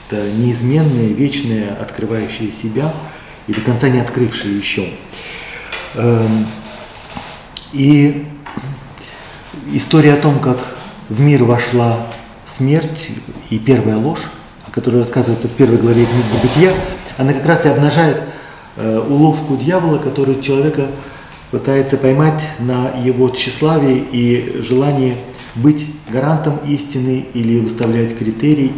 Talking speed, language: 105 wpm, Russian